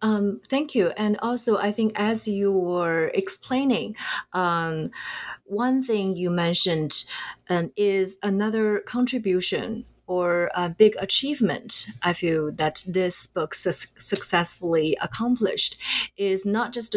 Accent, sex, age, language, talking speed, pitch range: Chinese, female, 30-49, English, 125 wpm, 160-205 Hz